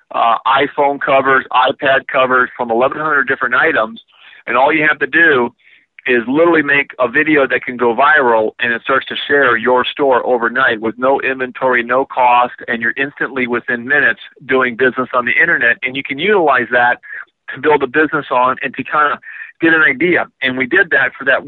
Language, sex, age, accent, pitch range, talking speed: English, male, 50-69, American, 120-140 Hz, 195 wpm